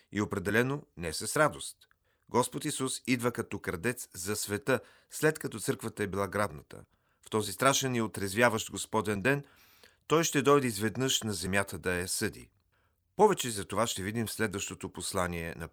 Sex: male